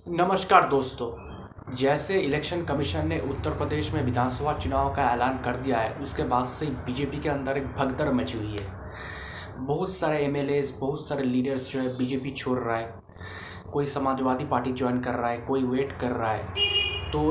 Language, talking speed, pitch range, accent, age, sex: Hindi, 180 wpm, 120-140 Hz, native, 20-39, male